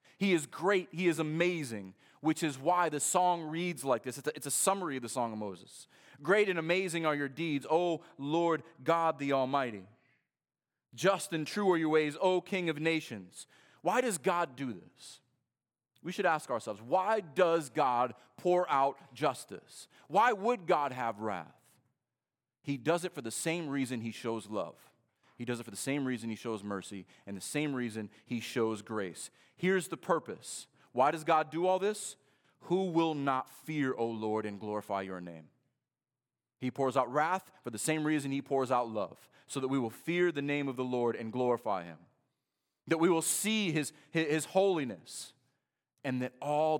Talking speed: 185 wpm